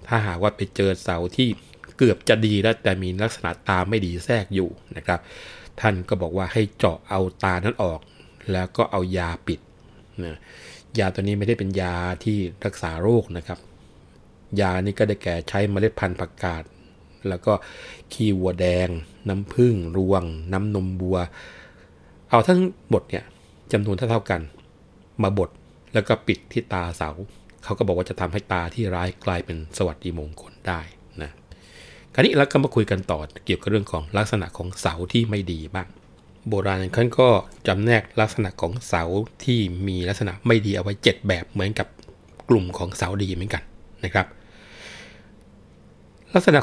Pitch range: 90-105 Hz